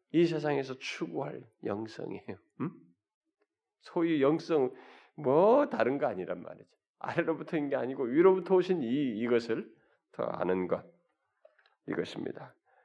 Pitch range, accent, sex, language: 100-145 Hz, native, male, Korean